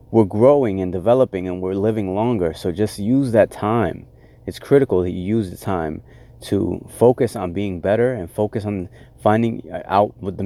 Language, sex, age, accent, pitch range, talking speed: English, male, 30-49, American, 95-120 Hz, 185 wpm